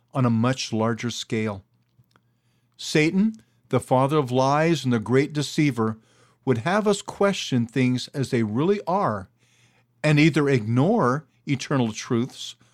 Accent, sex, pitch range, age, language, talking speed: American, male, 120-150 Hz, 50-69, English, 130 wpm